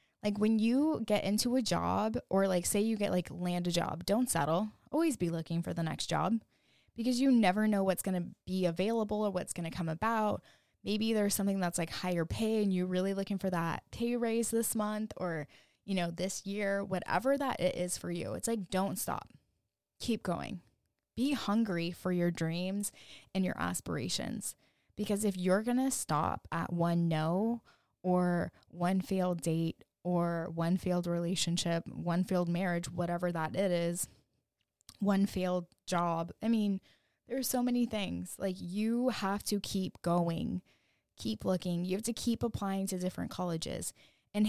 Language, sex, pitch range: English, female, 175-215 Hz